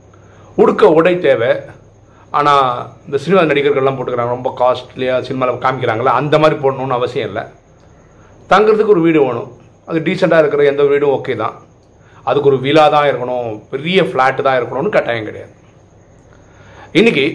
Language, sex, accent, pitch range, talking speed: Tamil, male, native, 120-155 Hz, 140 wpm